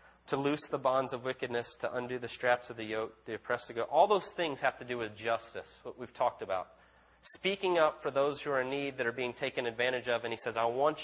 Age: 30-49